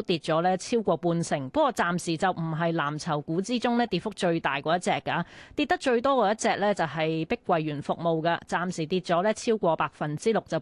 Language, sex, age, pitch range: Chinese, female, 20-39, 175-235 Hz